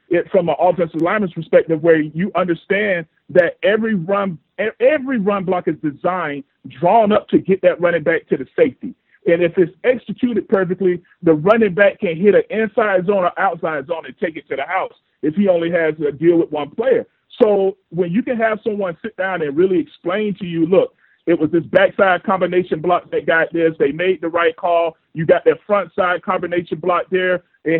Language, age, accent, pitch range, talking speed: English, 40-59, American, 170-215 Hz, 205 wpm